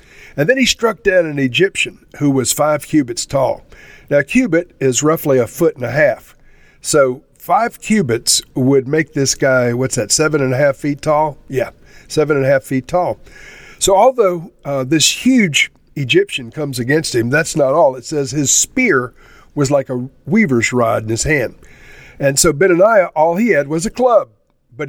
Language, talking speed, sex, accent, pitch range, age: English, 190 wpm, male, American, 125-160 Hz, 50-69